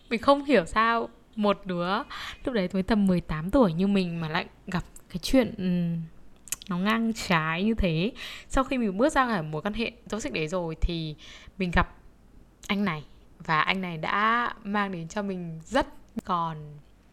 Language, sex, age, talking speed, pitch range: Vietnamese, female, 10-29, 180 wpm, 180-235 Hz